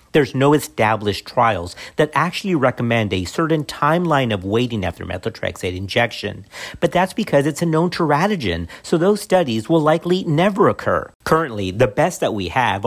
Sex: male